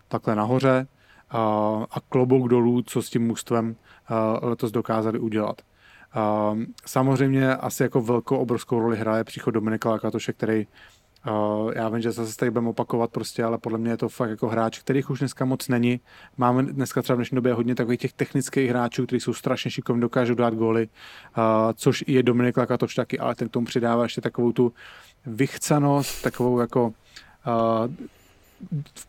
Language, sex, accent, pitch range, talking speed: English, male, Czech, 115-130 Hz, 165 wpm